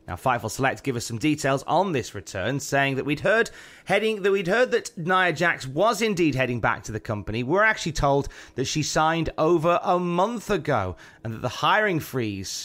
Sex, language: male, English